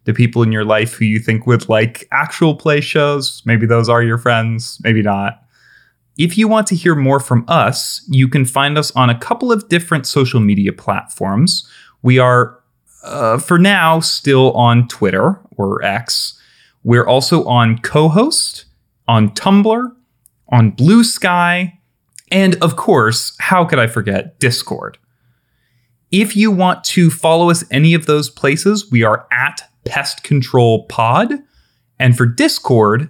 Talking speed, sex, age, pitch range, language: 155 wpm, male, 30-49, 115-160 Hz, English